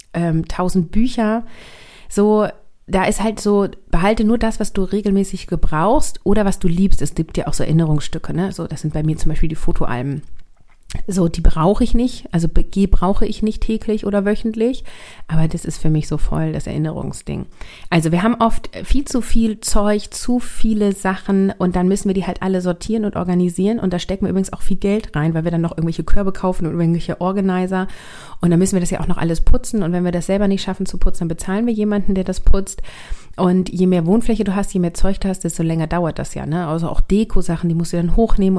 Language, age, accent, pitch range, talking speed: German, 30-49, German, 165-205 Hz, 230 wpm